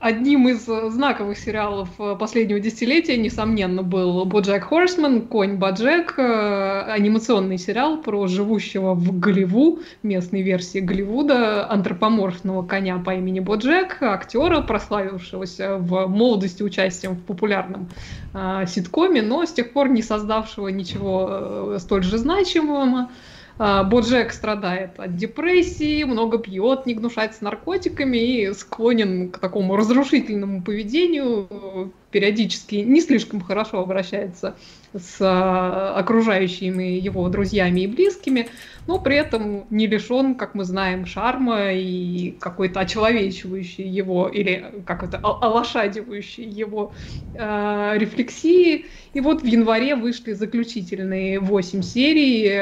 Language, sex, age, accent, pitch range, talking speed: Russian, female, 20-39, native, 190-235 Hz, 110 wpm